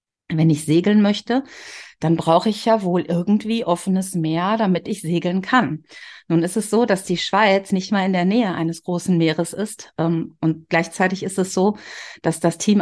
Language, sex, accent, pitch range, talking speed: German, female, German, 170-220 Hz, 185 wpm